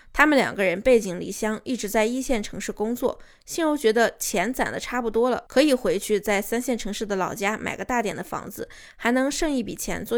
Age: 20-39